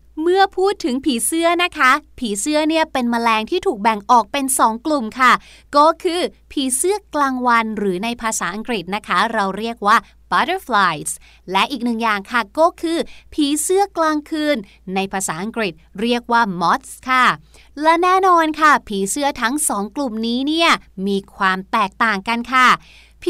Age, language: 20-39, Thai